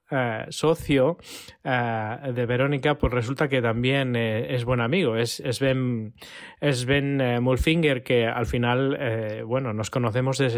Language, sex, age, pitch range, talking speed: Spanish, male, 20-39, 115-140 Hz, 135 wpm